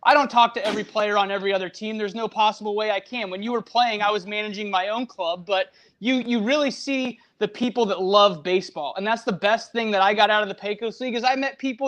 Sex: male